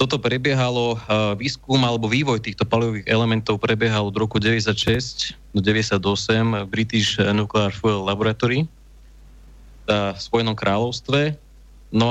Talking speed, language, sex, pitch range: 110 wpm, Slovak, male, 95-115 Hz